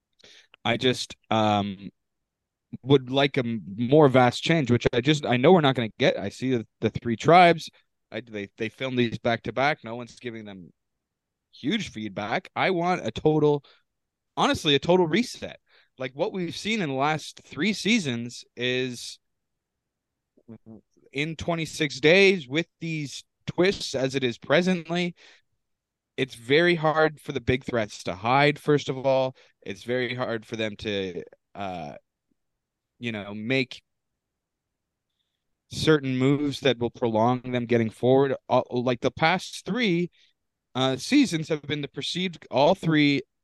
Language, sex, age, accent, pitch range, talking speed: English, male, 20-39, American, 115-155 Hz, 155 wpm